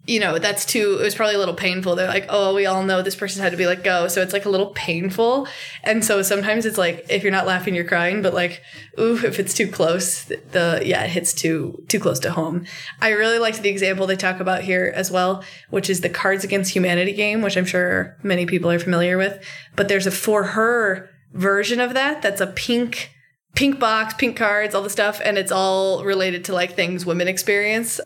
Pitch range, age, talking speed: 180-205 Hz, 20-39, 235 wpm